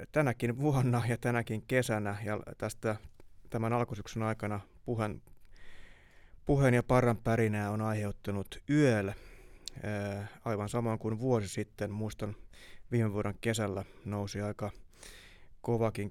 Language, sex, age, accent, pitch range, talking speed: Finnish, male, 20-39, native, 100-120 Hz, 110 wpm